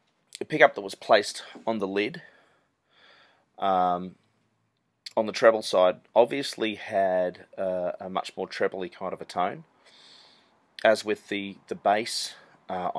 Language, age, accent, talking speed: English, 30-49, Australian, 140 wpm